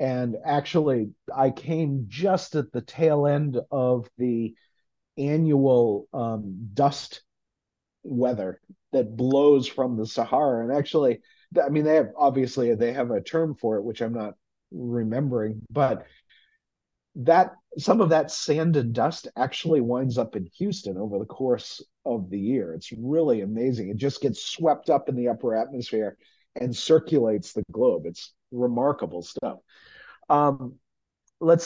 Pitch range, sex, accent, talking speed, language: 120-155 Hz, male, American, 145 wpm, English